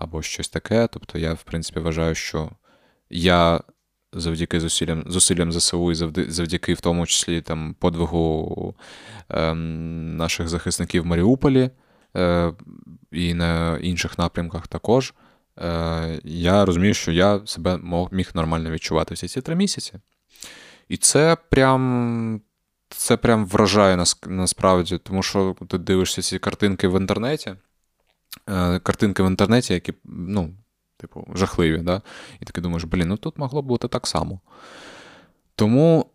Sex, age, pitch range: male, 20-39, 85-100 Hz